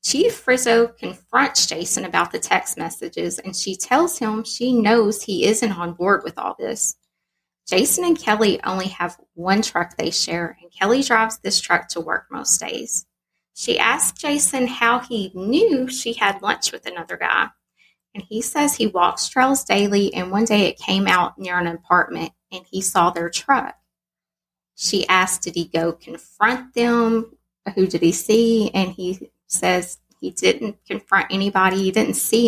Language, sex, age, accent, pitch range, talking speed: English, female, 20-39, American, 180-225 Hz, 170 wpm